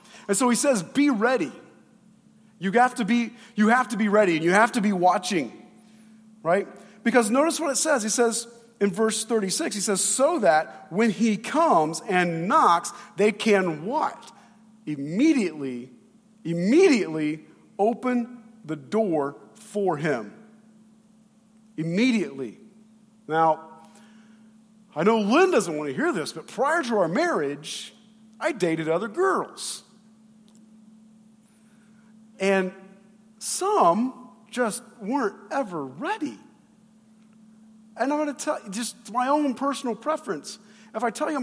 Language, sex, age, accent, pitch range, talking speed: English, male, 40-59, American, 210-265 Hz, 130 wpm